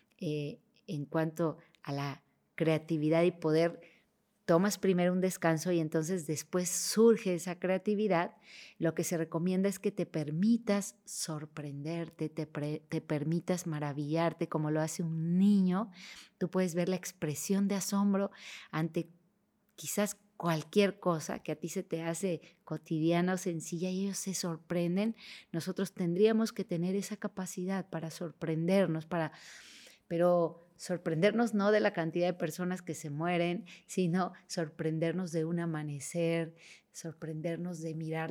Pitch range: 160-190 Hz